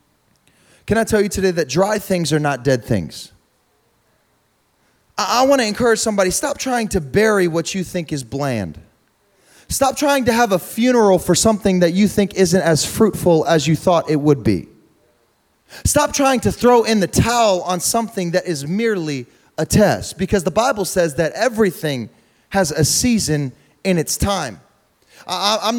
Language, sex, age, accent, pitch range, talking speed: English, male, 30-49, American, 140-190 Hz, 170 wpm